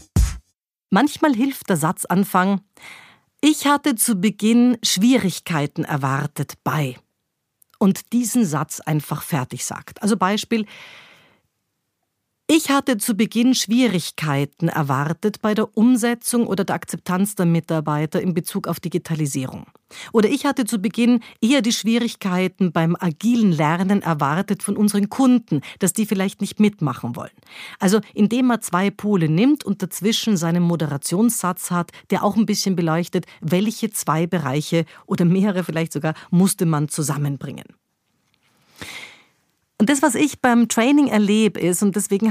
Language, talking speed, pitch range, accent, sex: German, 135 wpm, 165-220 Hz, German, female